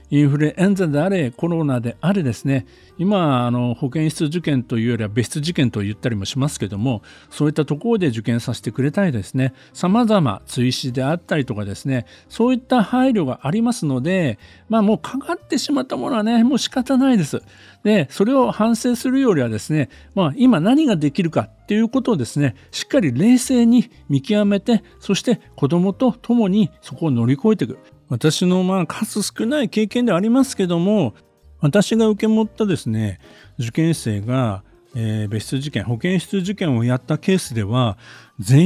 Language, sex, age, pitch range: Japanese, male, 50-69, 130-210 Hz